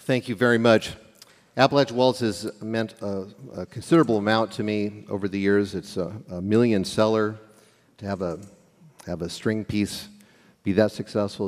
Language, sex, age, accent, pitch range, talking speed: English, male, 50-69, American, 100-115 Hz, 160 wpm